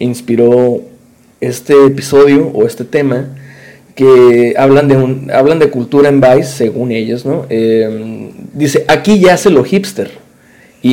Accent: Mexican